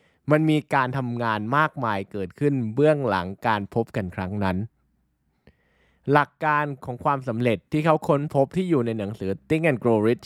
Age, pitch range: 20-39, 105-145 Hz